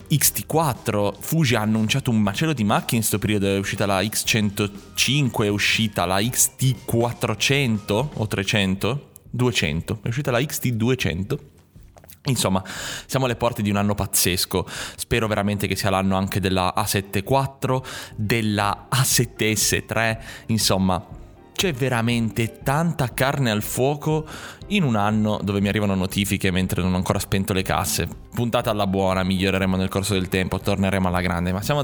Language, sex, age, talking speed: Italian, male, 20-39, 145 wpm